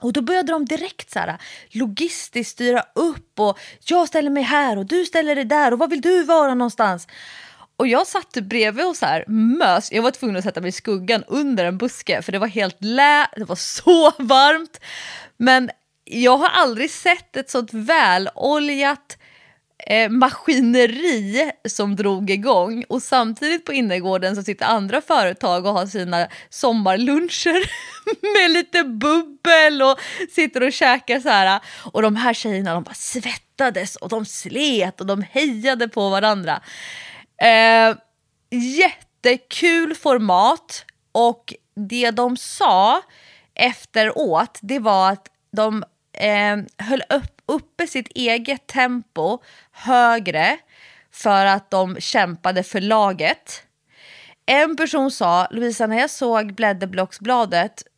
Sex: female